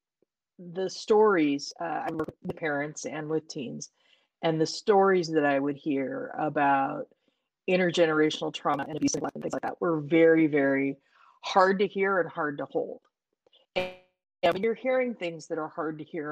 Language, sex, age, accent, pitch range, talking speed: English, female, 30-49, American, 145-175 Hz, 175 wpm